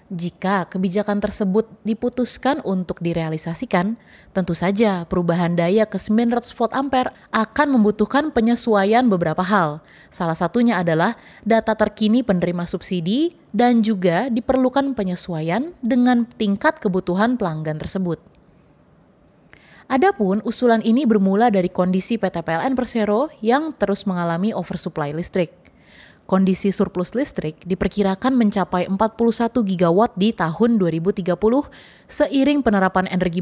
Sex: female